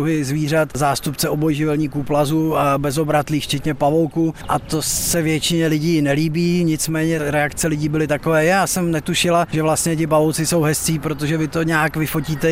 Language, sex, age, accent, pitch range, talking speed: Czech, male, 20-39, native, 145-160 Hz, 160 wpm